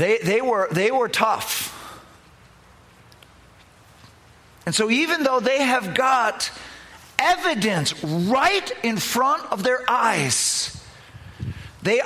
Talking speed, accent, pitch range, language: 105 wpm, American, 205-270 Hz, English